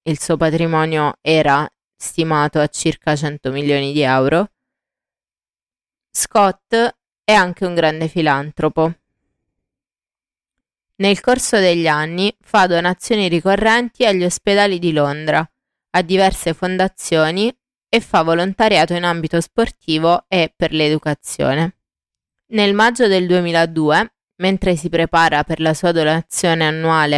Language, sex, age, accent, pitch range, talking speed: Italian, female, 20-39, native, 155-195 Hz, 115 wpm